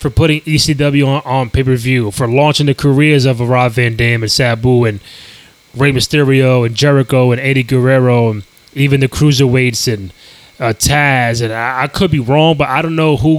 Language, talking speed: English, 195 wpm